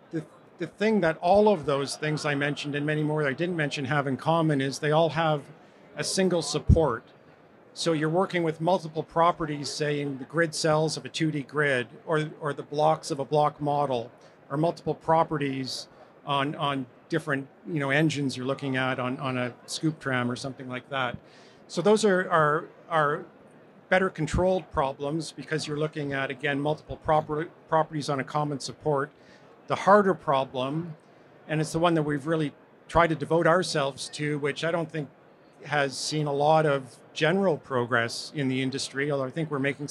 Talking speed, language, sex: 180 wpm, English, male